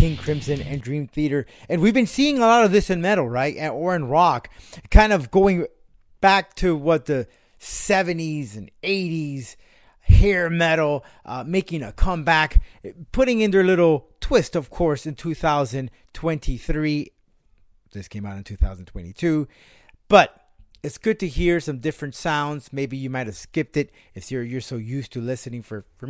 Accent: American